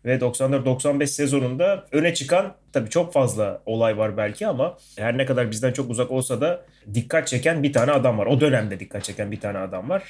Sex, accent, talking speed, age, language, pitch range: male, native, 200 wpm, 30-49, Turkish, 115-145 Hz